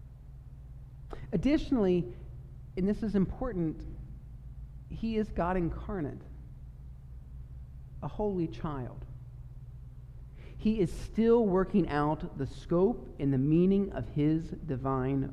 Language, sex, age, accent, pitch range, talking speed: English, male, 40-59, American, 125-185 Hz, 100 wpm